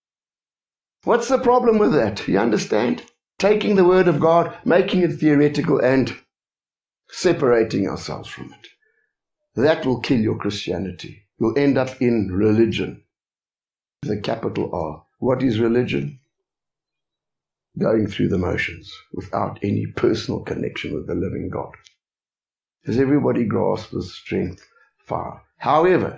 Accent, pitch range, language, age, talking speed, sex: South African, 120-180 Hz, English, 60-79, 125 wpm, male